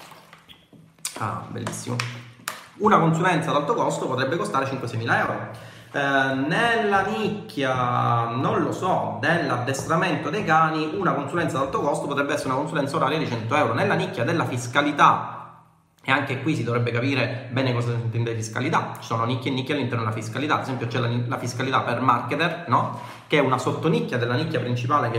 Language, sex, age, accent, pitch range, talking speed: Italian, male, 30-49, native, 120-150 Hz, 175 wpm